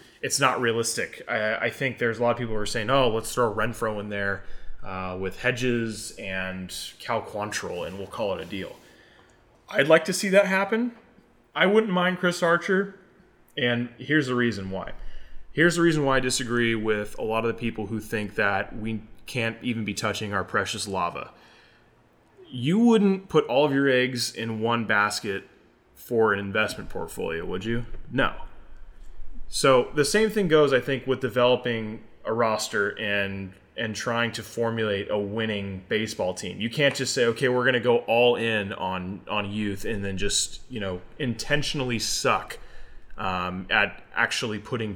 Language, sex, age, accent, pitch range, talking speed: English, male, 20-39, American, 105-135 Hz, 180 wpm